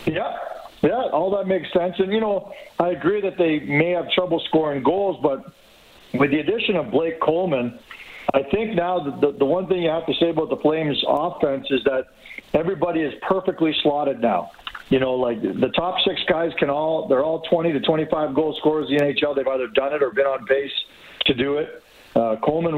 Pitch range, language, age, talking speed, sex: 140-185 Hz, English, 50-69, 210 wpm, male